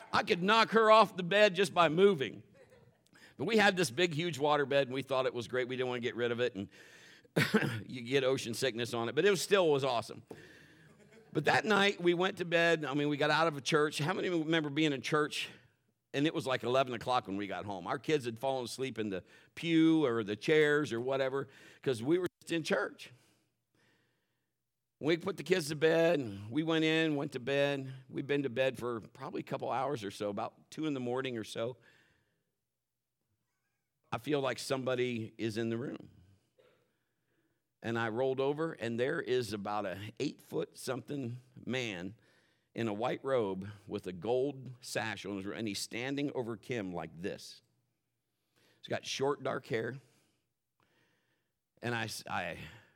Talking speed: 200 wpm